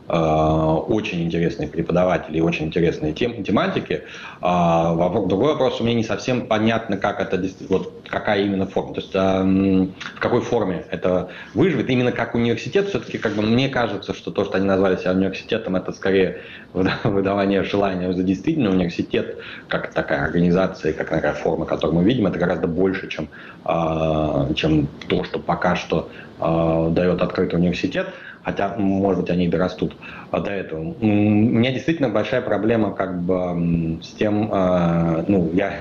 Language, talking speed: Russian, 145 wpm